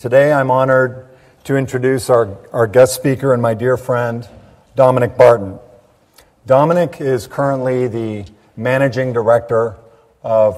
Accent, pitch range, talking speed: American, 110-125 Hz, 125 wpm